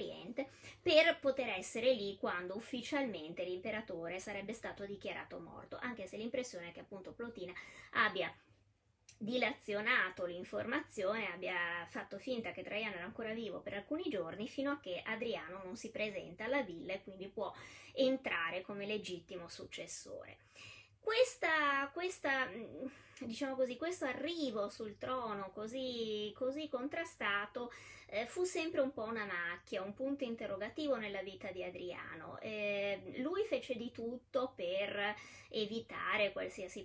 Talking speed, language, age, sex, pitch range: 130 wpm, Italian, 20-39, female, 190-270 Hz